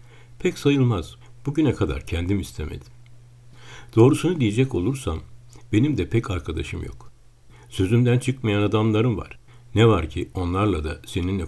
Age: 60-79